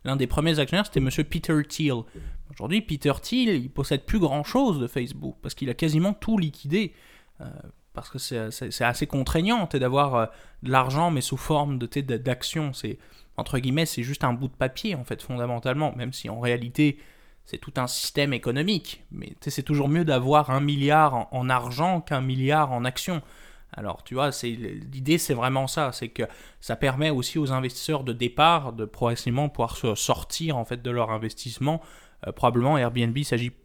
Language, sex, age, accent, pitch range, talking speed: French, male, 20-39, French, 120-150 Hz, 180 wpm